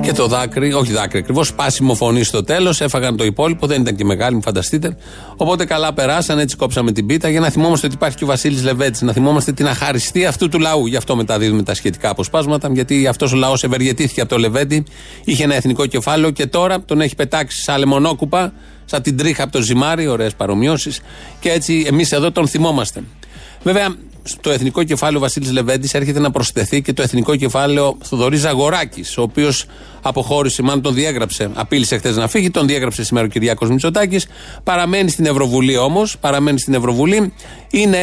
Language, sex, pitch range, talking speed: Greek, male, 130-165 Hz, 190 wpm